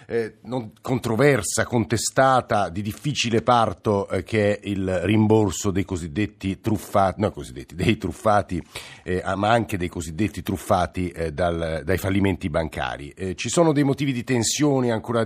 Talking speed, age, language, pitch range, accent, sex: 145 wpm, 50-69, Italian, 95-120 Hz, native, male